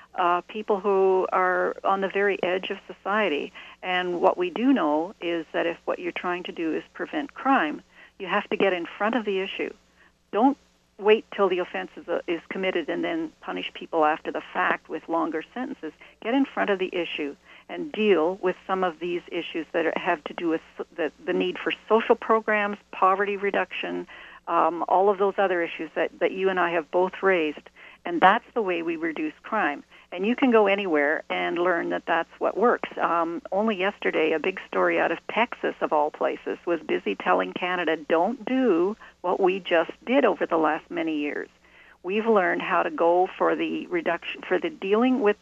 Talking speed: 200 wpm